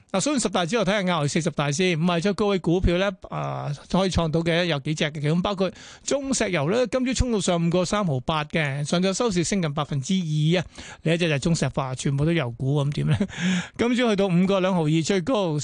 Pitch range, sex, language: 155-200 Hz, male, Chinese